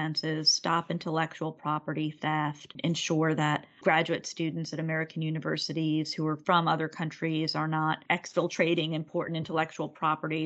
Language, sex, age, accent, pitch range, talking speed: English, female, 30-49, American, 155-165 Hz, 125 wpm